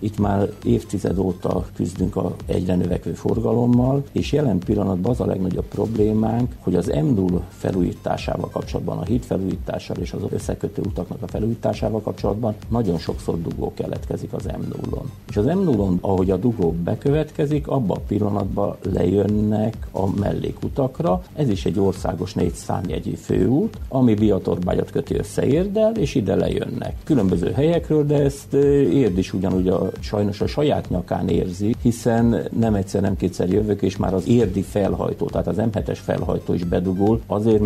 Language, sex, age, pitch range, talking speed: Hungarian, male, 50-69, 95-115 Hz, 155 wpm